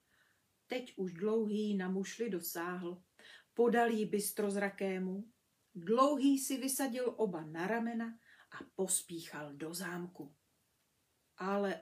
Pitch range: 190-260 Hz